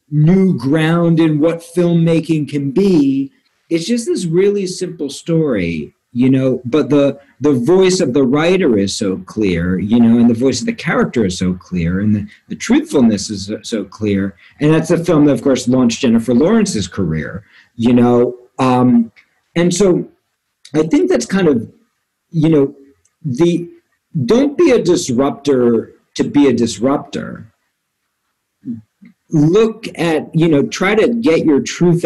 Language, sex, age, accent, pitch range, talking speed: English, male, 50-69, American, 125-170 Hz, 155 wpm